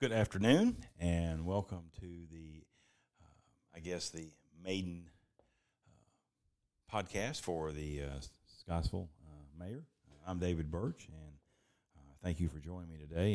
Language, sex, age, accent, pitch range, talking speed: English, male, 40-59, American, 80-95 Hz, 140 wpm